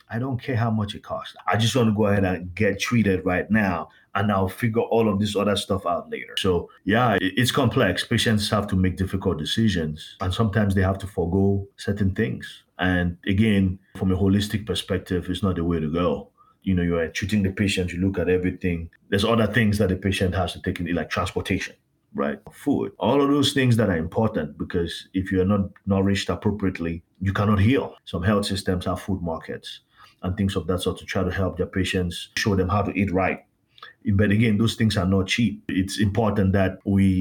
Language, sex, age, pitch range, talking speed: English, male, 30-49, 90-105 Hz, 215 wpm